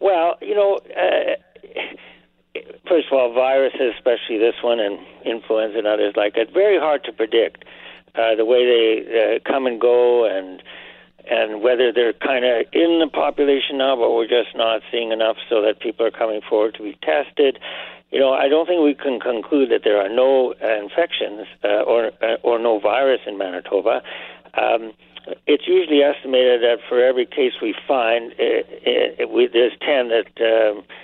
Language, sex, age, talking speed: English, male, 60-79, 175 wpm